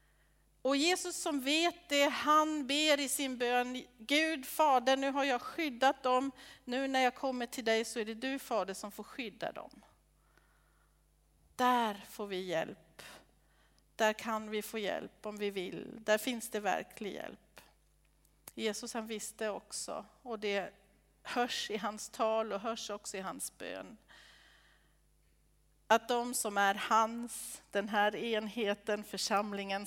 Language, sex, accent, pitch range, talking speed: Swedish, female, native, 200-250 Hz, 150 wpm